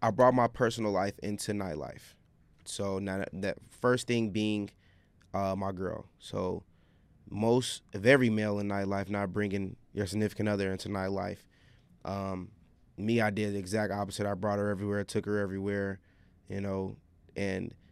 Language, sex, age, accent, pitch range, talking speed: English, male, 20-39, American, 100-115 Hz, 155 wpm